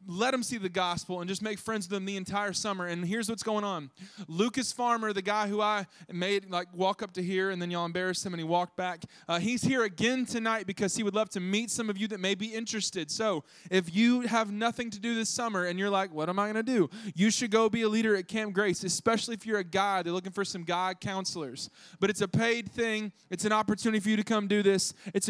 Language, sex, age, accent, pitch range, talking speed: English, male, 20-39, American, 185-220 Hz, 265 wpm